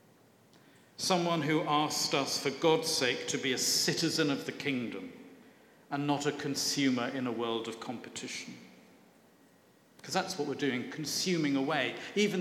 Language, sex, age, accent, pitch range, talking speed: English, male, 50-69, British, 135-170 Hz, 150 wpm